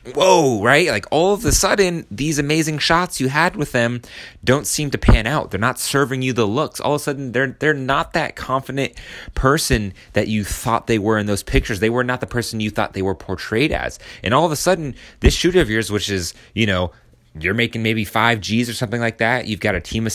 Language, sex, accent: English, male, American